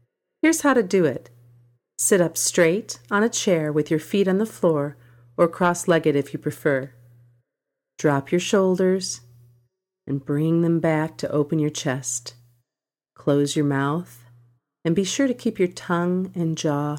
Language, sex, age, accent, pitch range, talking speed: English, female, 40-59, American, 130-175 Hz, 160 wpm